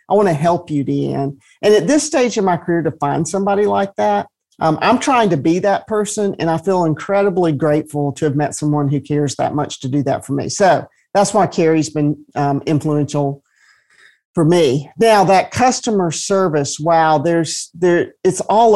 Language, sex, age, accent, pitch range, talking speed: English, male, 50-69, American, 150-185 Hz, 195 wpm